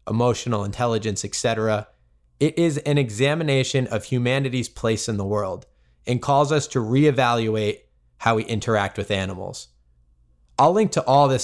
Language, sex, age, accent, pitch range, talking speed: English, male, 20-39, American, 100-125 Hz, 145 wpm